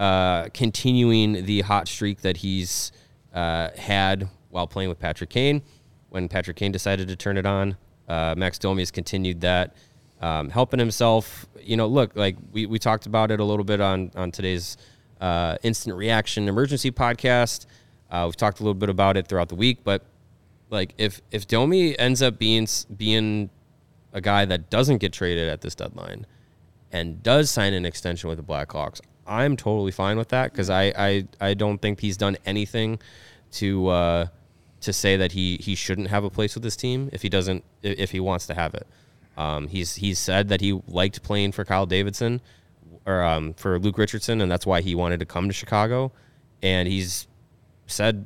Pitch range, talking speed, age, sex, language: 90-115 Hz, 190 wpm, 20-39, male, English